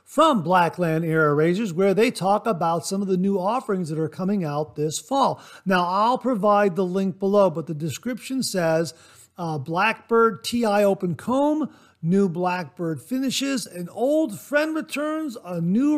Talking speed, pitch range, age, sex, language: 160 wpm, 180-235 Hz, 50-69, male, English